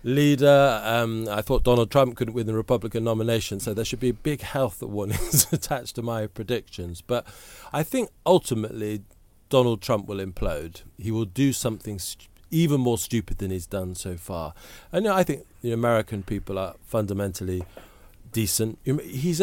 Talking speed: 175 wpm